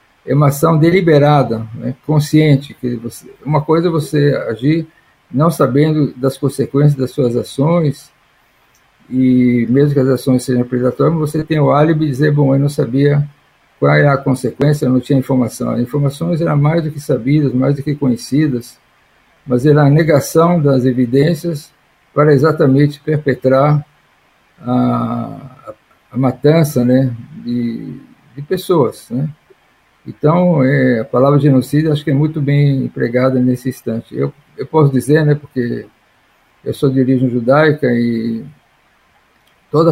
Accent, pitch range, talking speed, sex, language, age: Brazilian, 125-150 Hz, 150 wpm, male, Portuguese, 50-69